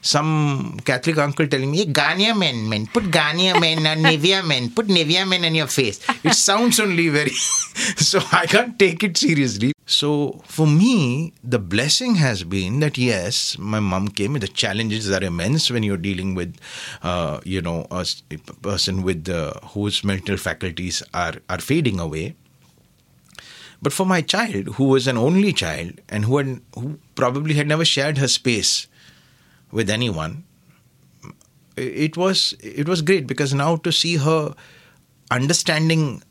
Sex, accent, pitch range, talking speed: male, Indian, 110-160 Hz, 160 wpm